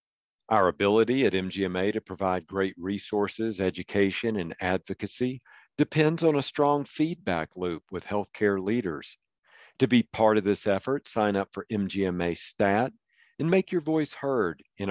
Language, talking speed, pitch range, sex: English, 150 wpm, 100-125 Hz, male